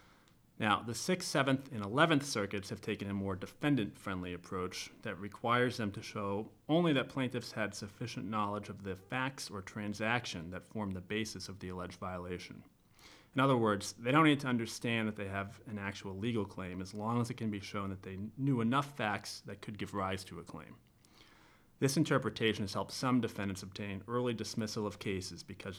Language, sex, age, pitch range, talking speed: English, male, 30-49, 100-120 Hz, 195 wpm